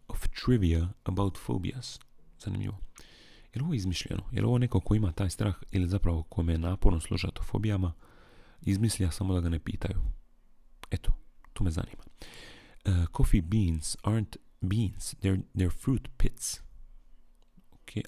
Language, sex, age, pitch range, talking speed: Croatian, male, 40-59, 85-110 Hz, 140 wpm